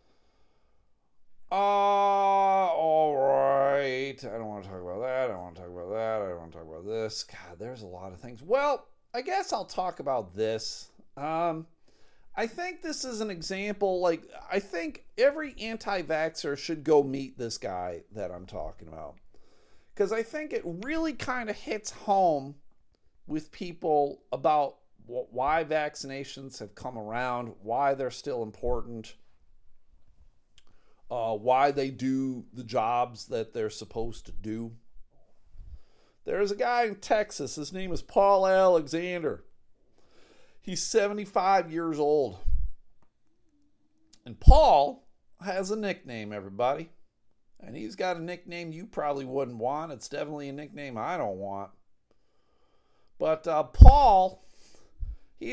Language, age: English, 40-59